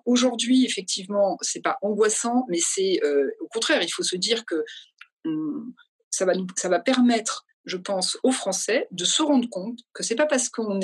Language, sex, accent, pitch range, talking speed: French, female, French, 185-300 Hz, 195 wpm